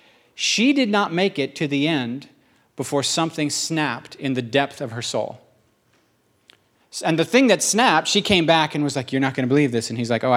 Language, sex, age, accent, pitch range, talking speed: English, male, 40-59, American, 130-175 Hz, 220 wpm